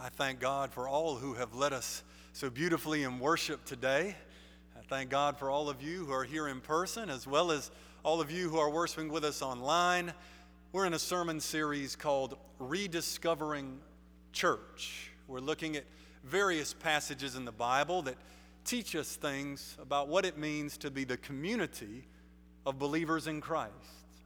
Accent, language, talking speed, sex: American, English, 175 wpm, male